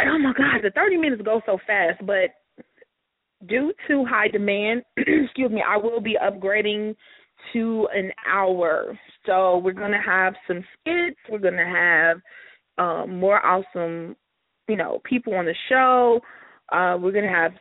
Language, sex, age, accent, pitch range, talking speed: English, female, 20-39, American, 200-255 Hz, 165 wpm